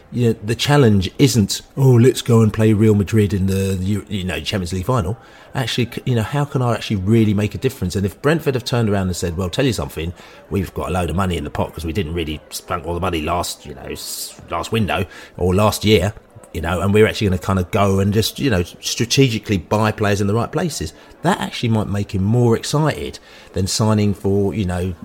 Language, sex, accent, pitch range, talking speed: English, male, British, 95-120 Hz, 240 wpm